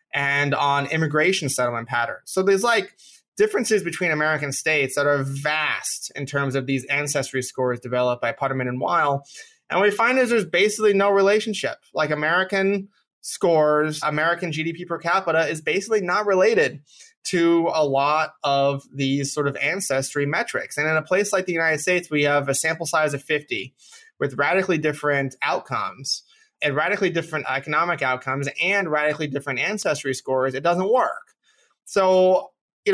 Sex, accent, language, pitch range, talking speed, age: male, American, English, 135-185 Hz, 160 wpm, 20-39